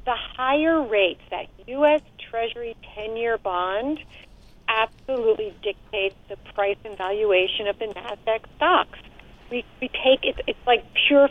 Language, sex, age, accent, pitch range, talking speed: English, female, 50-69, American, 215-285 Hz, 140 wpm